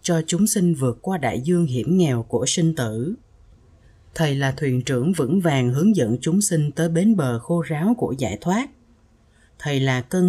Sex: female